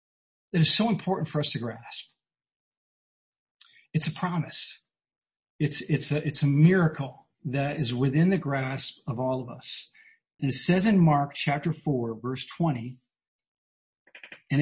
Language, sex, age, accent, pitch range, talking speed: English, male, 50-69, American, 140-175 Hz, 150 wpm